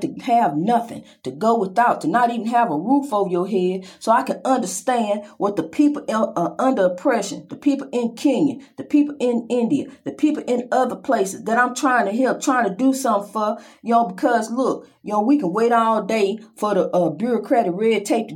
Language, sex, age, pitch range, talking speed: English, female, 40-59, 210-265 Hz, 220 wpm